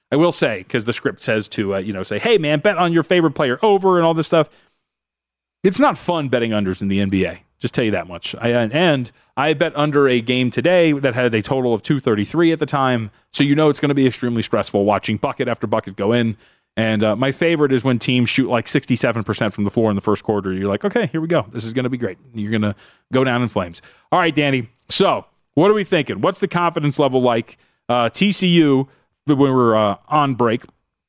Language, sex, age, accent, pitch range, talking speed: English, male, 30-49, American, 120-155 Hz, 240 wpm